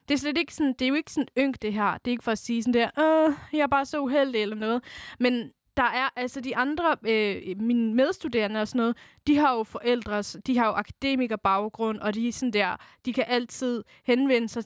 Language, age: Danish, 20-39